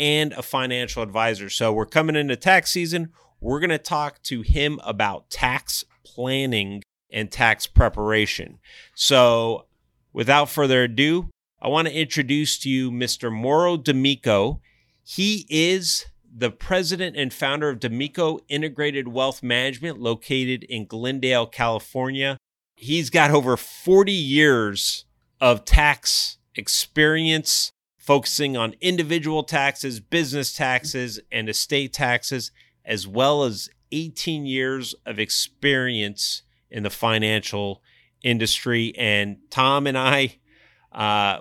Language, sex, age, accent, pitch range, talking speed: English, male, 30-49, American, 115-145 Hz, 120 wpm